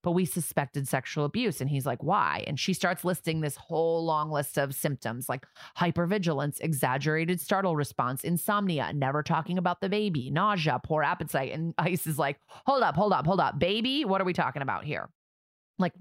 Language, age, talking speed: English, 30-49, 190 wpm